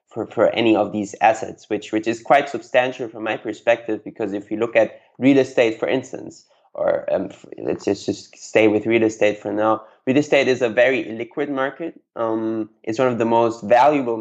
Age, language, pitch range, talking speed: 20-39, English, 110-125 Hz, 200 wpm